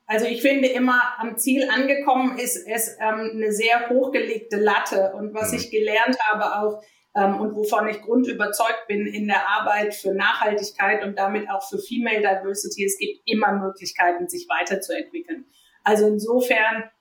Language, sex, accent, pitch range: German, female, German, 210-255 Hz